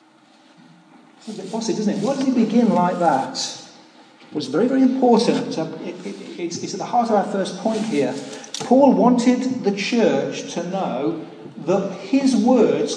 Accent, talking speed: British, 170 wpm